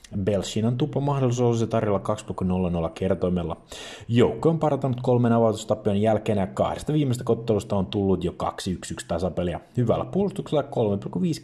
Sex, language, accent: male, Finnish, native